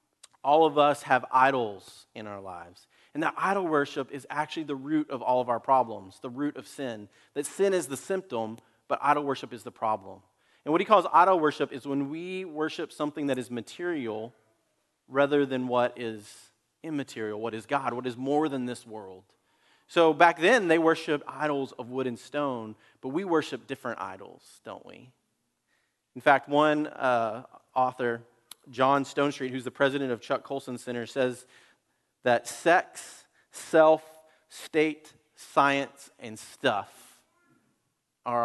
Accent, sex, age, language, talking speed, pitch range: American, male, 30-49, English, 165 wpm, 120-150 Hz